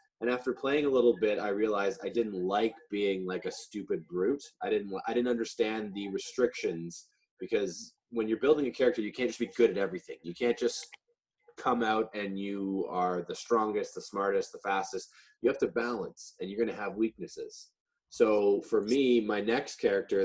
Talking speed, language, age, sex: 195 wpm, English, 20-39, male